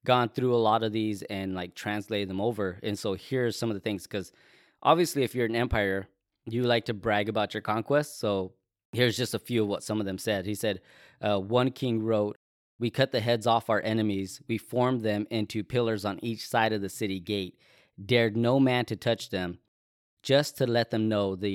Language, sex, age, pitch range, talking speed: English, male, 20-39, 100-115 Hz, 220 wpm